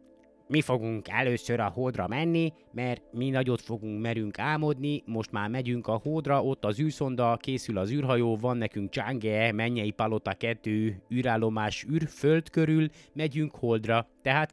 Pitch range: 105-145 Hz